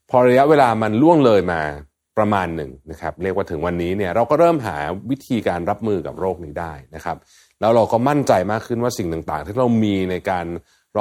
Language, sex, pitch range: Thai, male, 80-110 Hz